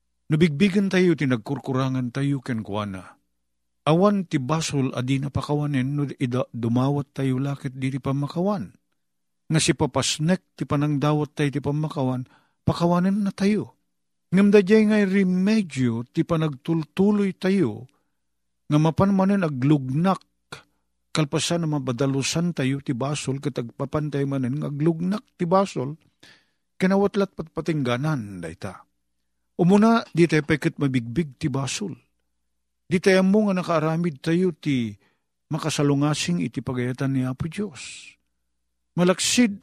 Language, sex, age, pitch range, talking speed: Filipino, male, 50-69, 125-185 Hz, 110 wpm